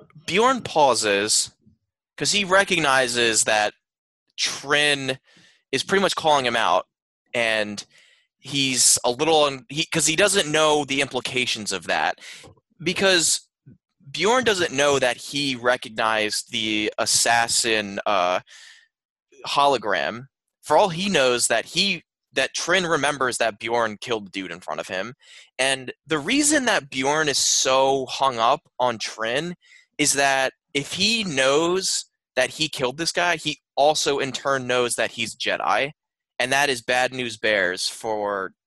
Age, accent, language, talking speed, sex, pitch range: 20-39, American, English, 140 wpm, male, 120-165 Hz